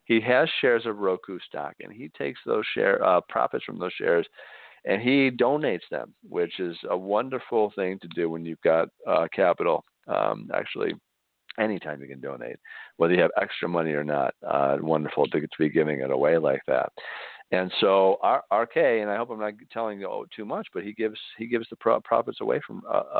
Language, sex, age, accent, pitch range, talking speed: English, male, 50-69, American, 90-115 Hz, 200 wpm